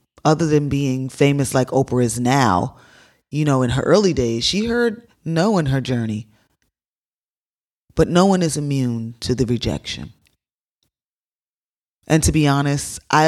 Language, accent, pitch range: English, American, 120-155 Hz